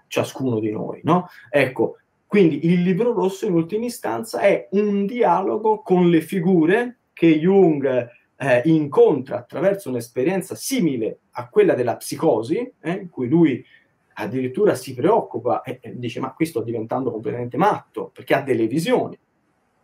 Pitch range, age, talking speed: 135-185 Hz, 30-49, 150 wpm